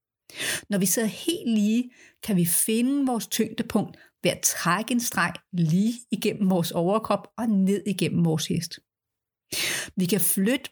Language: Danish